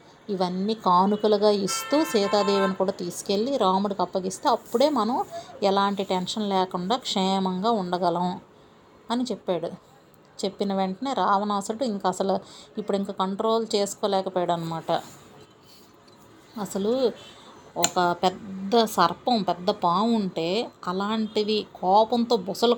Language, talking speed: Telugu, 90 wpm